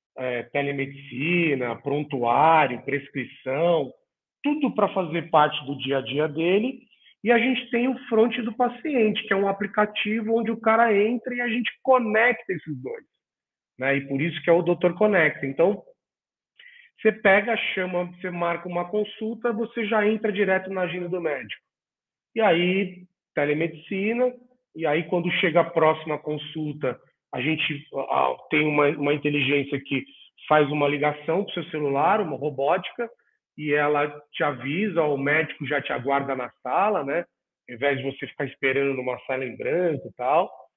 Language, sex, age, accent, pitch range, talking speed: Portuguese, male, 40-59, Brazilian, 145-210 Hz, 160 wpm